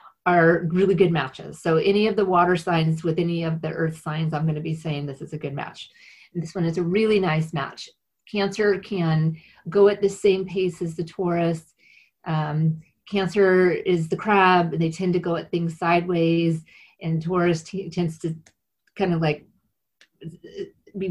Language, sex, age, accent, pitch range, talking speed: English, female, 30-49, American, 165-200 Hz, 180 wpm